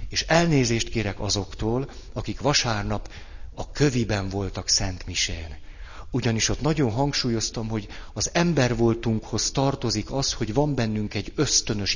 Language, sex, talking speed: Hungarian, male, 130 wpm